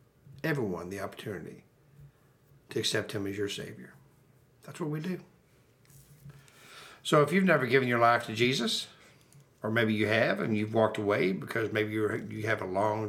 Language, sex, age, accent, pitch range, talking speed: English, male, 60-79, American, 110-140 Hz, 170 wpm